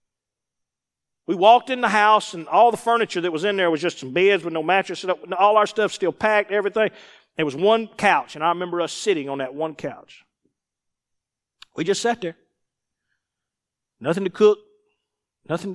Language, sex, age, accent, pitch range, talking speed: English, male, 50-69, American, 175-285 Hz, 185 wpm